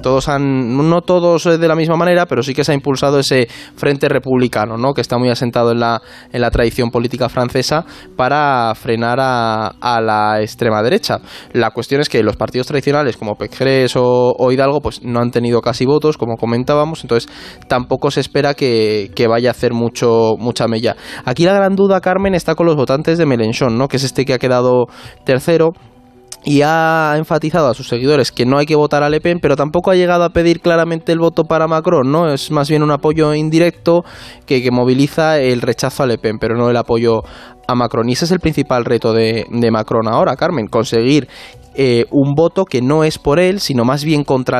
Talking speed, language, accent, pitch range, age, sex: 210 wpm, Spanish, Spanish, 120-150 Hz, 20-39, male